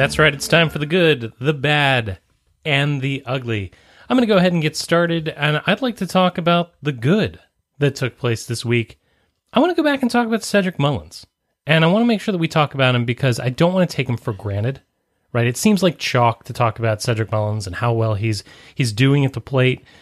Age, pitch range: 30-49, 115-160 Hz